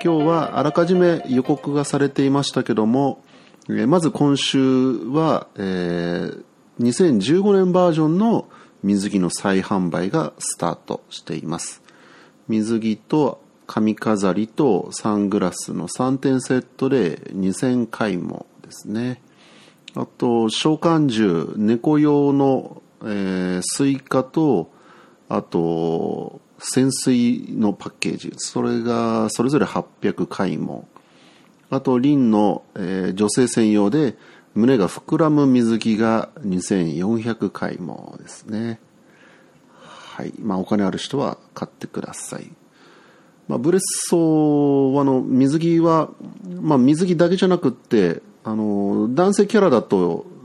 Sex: male